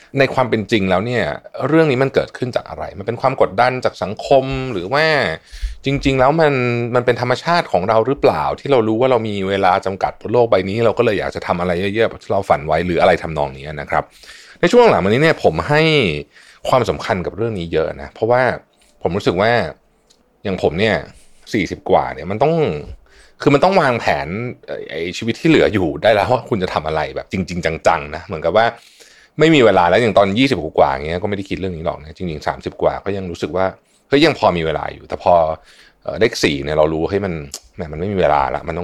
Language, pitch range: Thai, 85-120 Hz